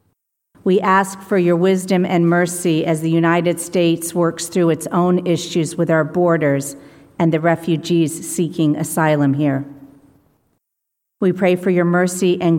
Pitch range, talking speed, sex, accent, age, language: 145-175 Hz, 150 wpm, female, American, 50-69, English